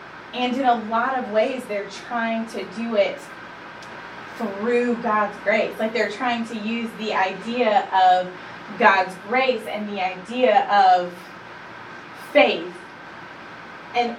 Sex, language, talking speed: female, English, 125 wpm